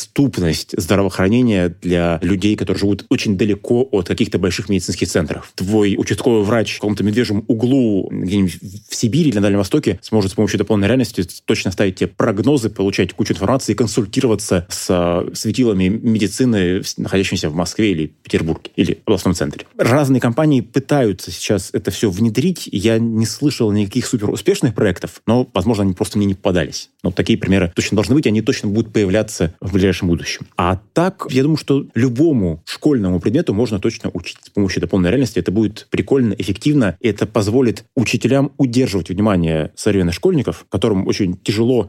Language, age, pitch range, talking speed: Russian, 30-49, 95-125 Hz, 165 wpm